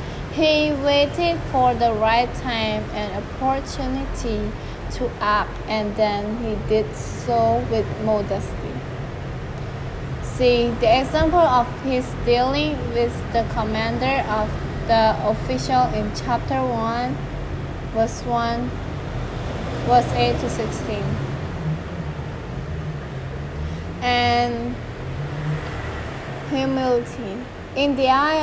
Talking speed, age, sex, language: 90 wpm, 20-39, female, English